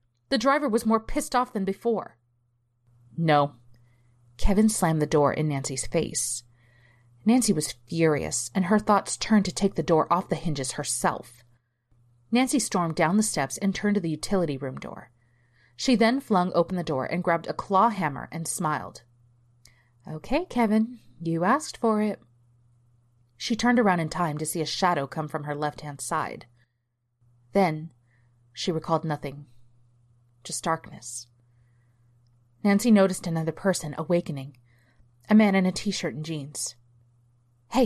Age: 30-49